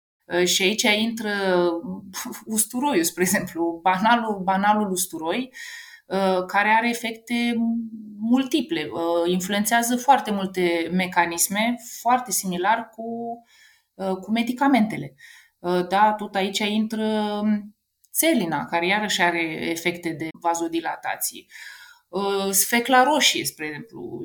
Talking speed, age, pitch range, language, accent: 90 wpm, 20-39, 185-225 Hz, Romanian, native